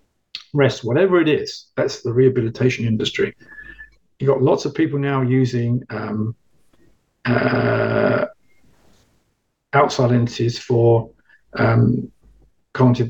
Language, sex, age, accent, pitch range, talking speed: English, male, 50-69, British, 115-140 Hz, 100 wpm